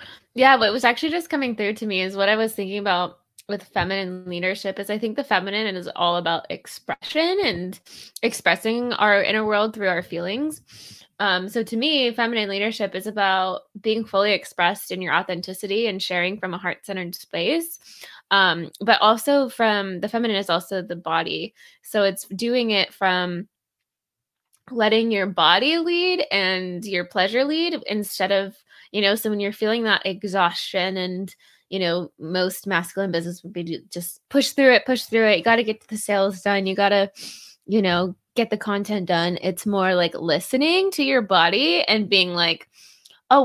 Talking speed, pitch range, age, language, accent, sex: 180 wpm, 185-225 Hz, 20-39, English, American, female